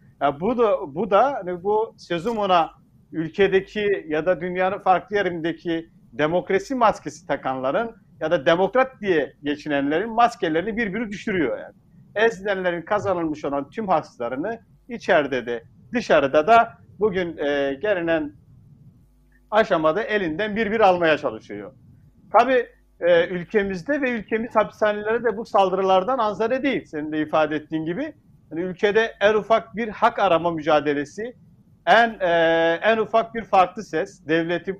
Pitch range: 165-225 Hz